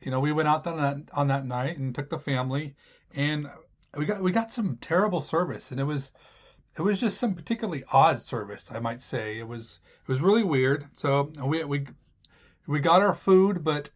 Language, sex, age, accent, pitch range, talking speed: English, male, 40-59, American, 135-170 Hz, 210 wpm